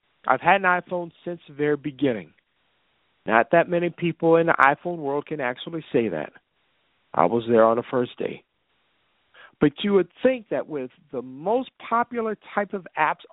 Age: 50-69